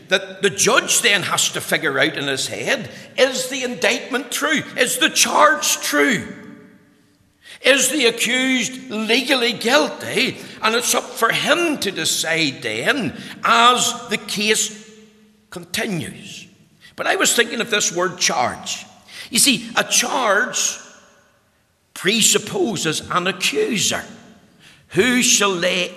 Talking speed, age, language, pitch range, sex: 125 wpm, 60-79, English, 185-260 Hz, male